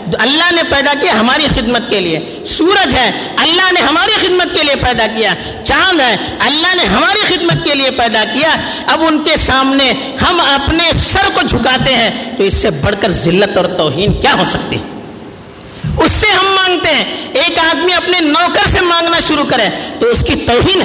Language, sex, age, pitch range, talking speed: Urdu, female, 50-69, 235-345 Hz, 190 wpm